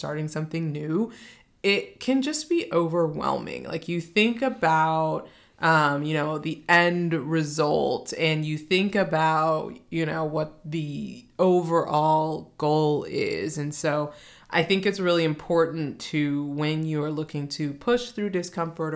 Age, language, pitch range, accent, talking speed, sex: 20-39, English, 150-180 Hz, American, 140 wpm, female